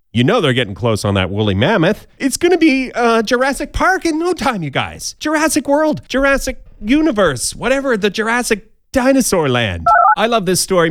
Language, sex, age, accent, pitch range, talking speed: English, male, 30-49, American, 105-155 Hz, 180 wpm